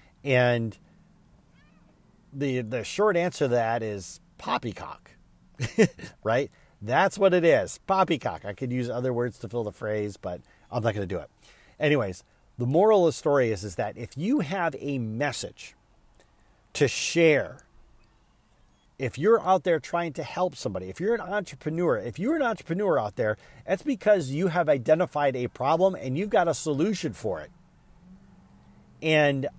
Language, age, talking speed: English, 40-59, 160 wpm